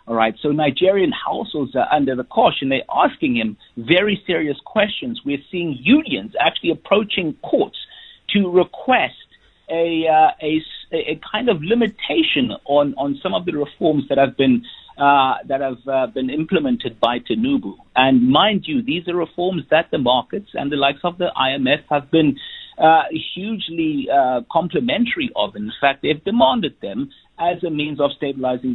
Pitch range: 140-210 Hz